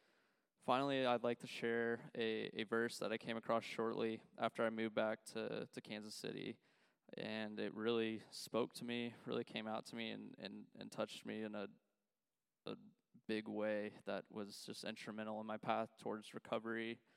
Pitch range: 110-120 Hz